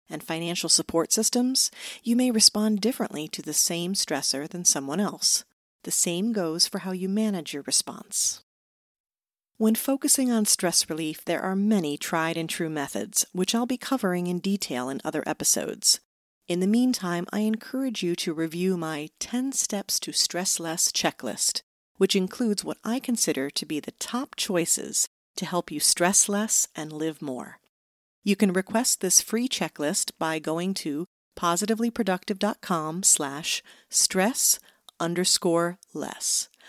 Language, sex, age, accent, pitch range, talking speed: English, female, 40-59, American, 165-220 Hz, 150 wpm